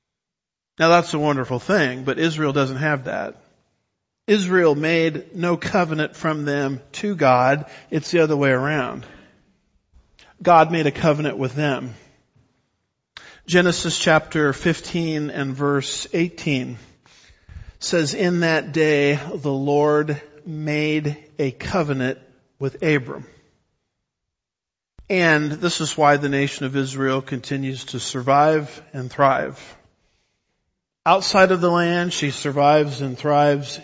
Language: English